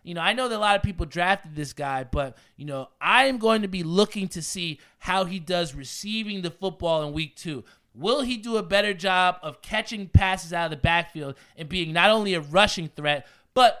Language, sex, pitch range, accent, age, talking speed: English, male, 155-205 Hz, American, 20-39, 230 wpm